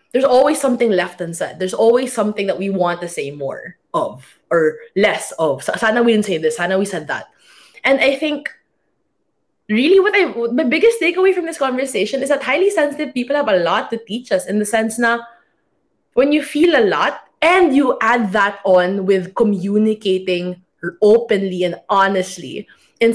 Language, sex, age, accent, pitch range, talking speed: English, female, 20-39, Filipino, 185-265 Hz, 180 wpm